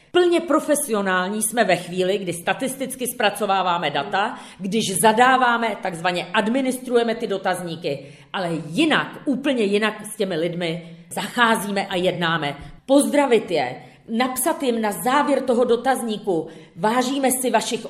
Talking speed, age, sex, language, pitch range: 120 wpm, 40-59, female, Czech, 185-240 Hz